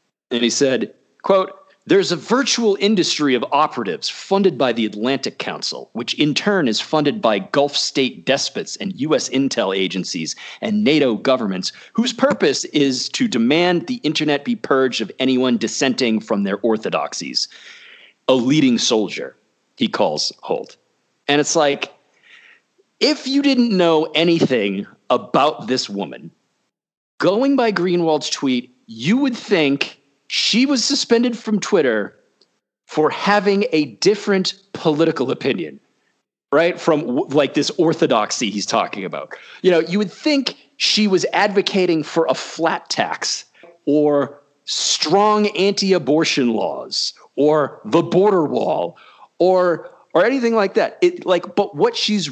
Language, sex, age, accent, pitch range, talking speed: English, male, 40-59, American, 145-230 Hz, 135 wpm